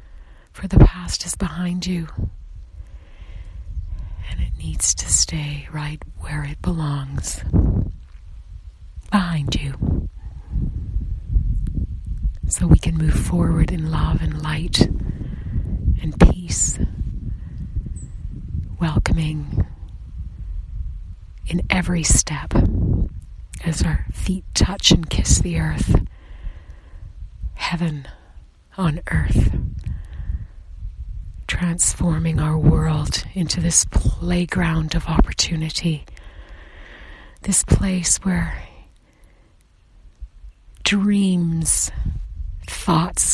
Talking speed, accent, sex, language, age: 80 wpm, American, female, English, 40-59